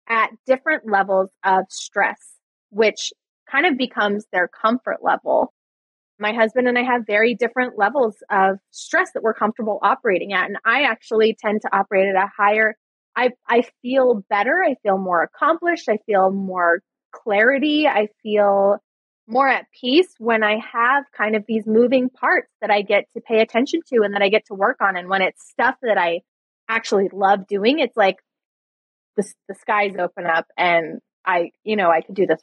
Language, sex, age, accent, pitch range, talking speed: English, female, 20-39, American, 200-245 Hz, 185 wpm